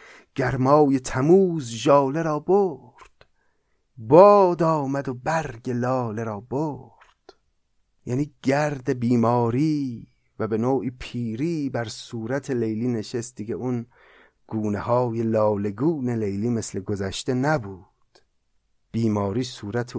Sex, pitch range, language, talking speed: male, 110-140 Hz, Persian, 100 wpm